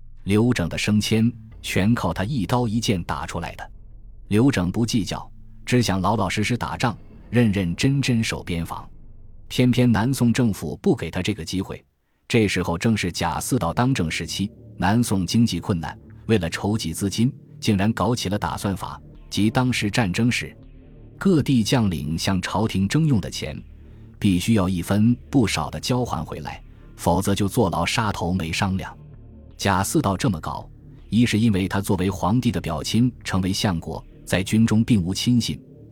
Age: 20-39